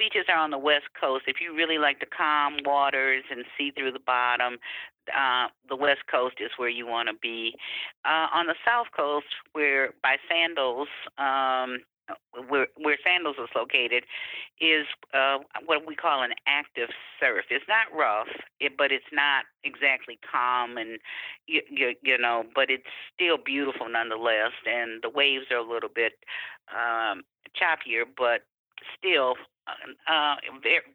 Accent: American